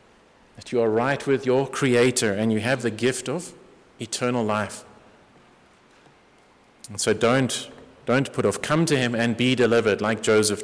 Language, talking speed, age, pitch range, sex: English, 165 wpm, 30-49, 95-115 Hz, male